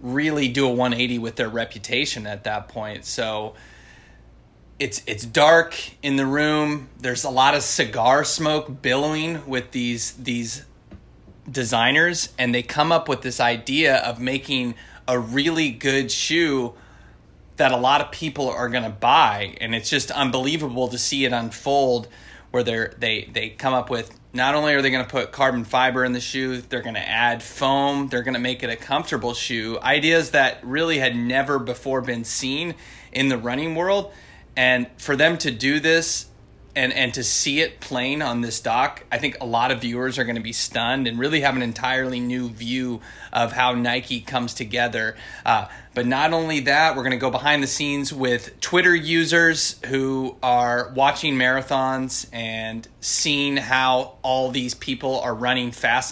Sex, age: male, 30-49